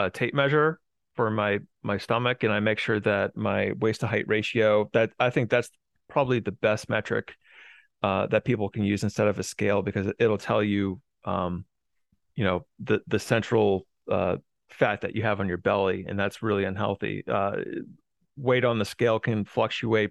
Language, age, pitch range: English, 30-49, 100-115 Hz